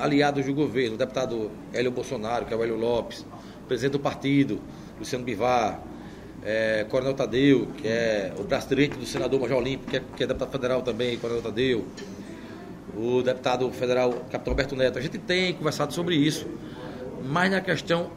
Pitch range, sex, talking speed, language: 135-175 Hz, male, 180 wpm, Portuguese